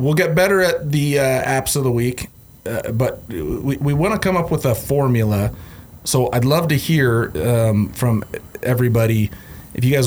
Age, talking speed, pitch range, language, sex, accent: 30-49, 190 wpm, 105-125 Hz, English, male, American